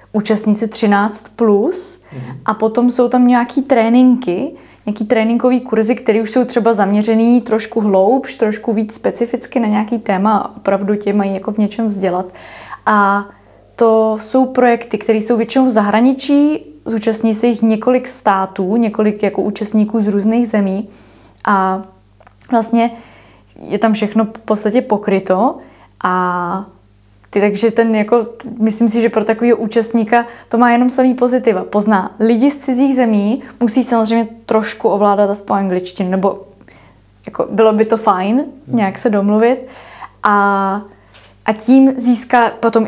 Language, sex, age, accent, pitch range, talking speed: Czech, female, 20-39, native, 205-240 Hz, 145 wpm